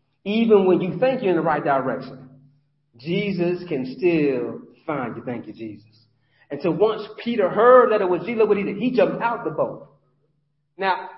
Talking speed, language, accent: 170 wpm, English, American